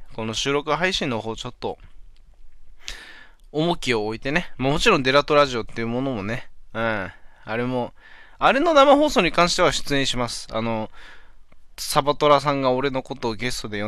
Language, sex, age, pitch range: Japanese, male, 20-39, 110-150 Hz